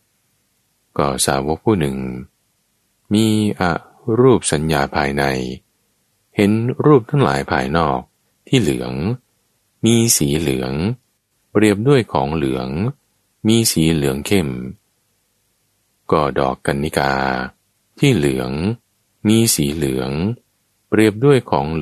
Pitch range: 70-110 Hz